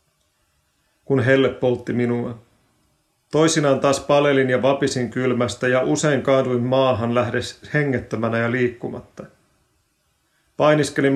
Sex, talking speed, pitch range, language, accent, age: male, 100 wpm, 120-145 Hz, Finnish, native, 40-59